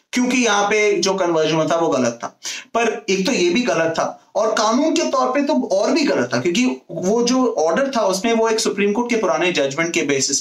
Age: 30-49